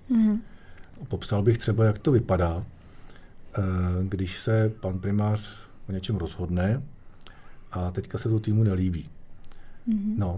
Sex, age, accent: male, 50-69, native